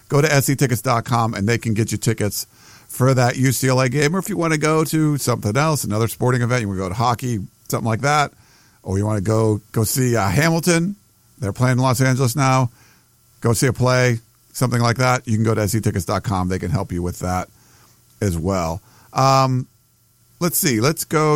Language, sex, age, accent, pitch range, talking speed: English, male, 50-69, American, 110-145 Hz, 210 wpm